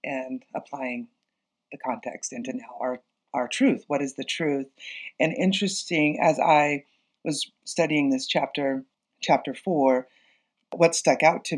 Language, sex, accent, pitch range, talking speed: English, female, American, 135-165 Hz, 140 wpm